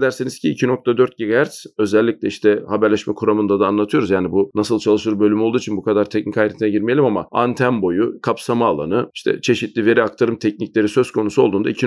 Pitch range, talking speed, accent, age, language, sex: 110-140 Hz, 175 wpm, native, 40-59, Turkish, male